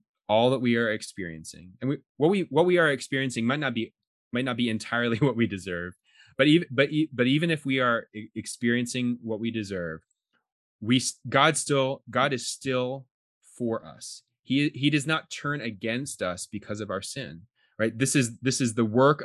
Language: English